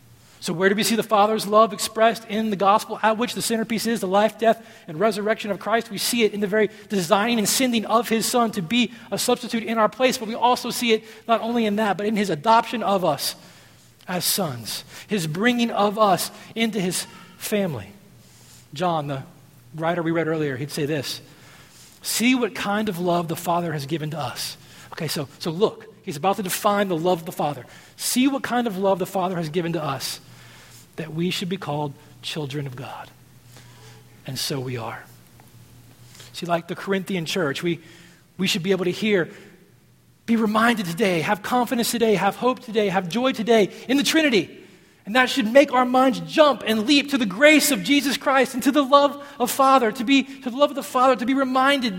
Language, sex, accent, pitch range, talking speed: English, male, American, 175-240 Hz, 210 wpm